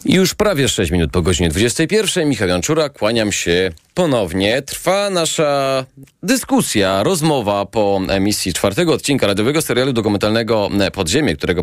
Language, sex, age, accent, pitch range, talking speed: Polish, male, 30-49, native, 90-130 Hz, 140 wpm